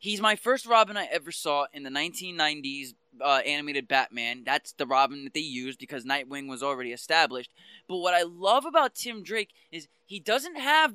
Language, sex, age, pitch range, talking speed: English, male, 20-39, 145-220 Hz, 190 wpm